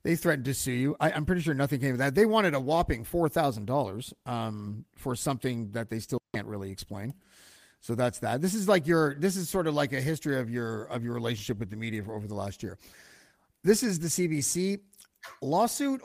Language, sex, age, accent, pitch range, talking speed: English, male, 50-69, American, 120-190 Hz, 230 wpm